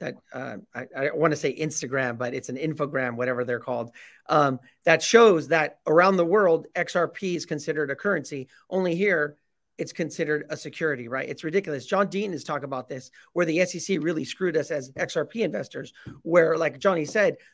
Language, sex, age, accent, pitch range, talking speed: English, male, 40-59, American, 150-185 Hz, 190 wpm